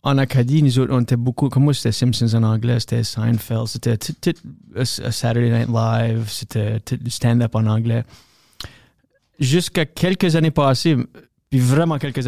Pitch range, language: 120-145 Hz, French